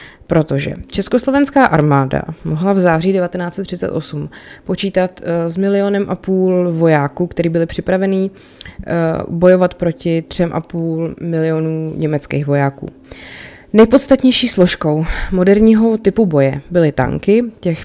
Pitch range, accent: 160-190 Hz, native